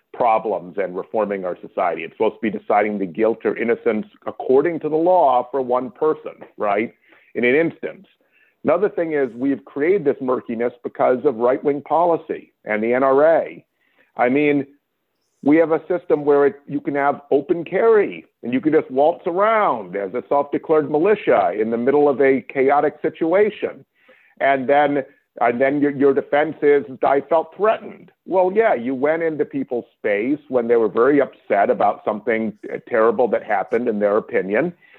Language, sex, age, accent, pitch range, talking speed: English, male, 50-69, American, 135-180 Hz, 170 wpm